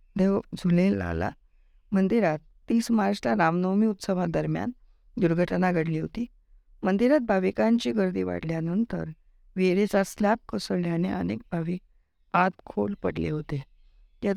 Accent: native